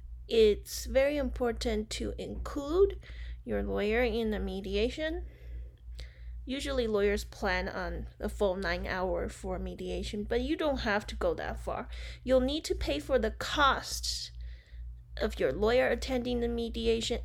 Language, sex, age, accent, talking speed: English, female, 20-39, American, 145 wpm